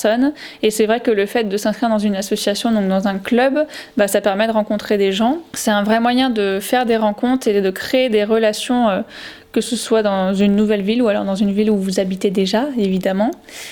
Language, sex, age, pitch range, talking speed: French, female, 20-39, 200-230 Hz, 230 wpm